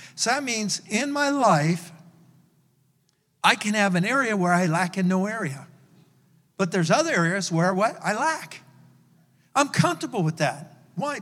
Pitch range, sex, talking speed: 170-210 Hz, male, 160 wpm